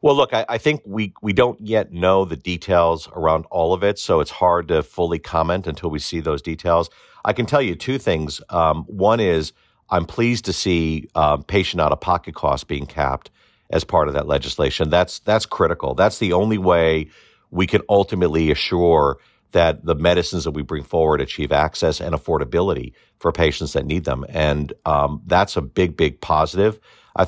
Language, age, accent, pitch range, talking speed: English, 50-69, American, 75-95 Hz, 185 wpm